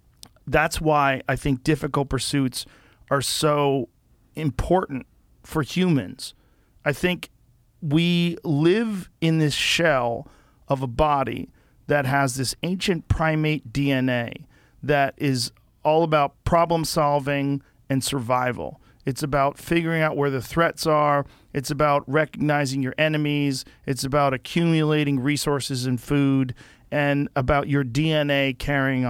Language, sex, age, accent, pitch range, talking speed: English, male, 40-59, American, 130-155 Hz, 120 wpm